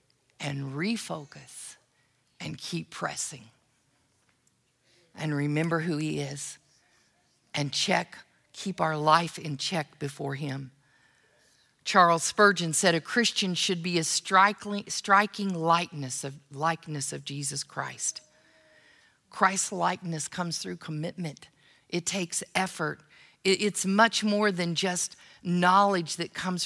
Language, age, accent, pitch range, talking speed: English, 50-69, American, 160-200 Hz, 110 wpm